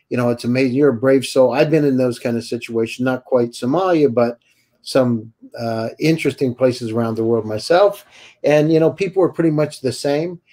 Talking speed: 205 wpm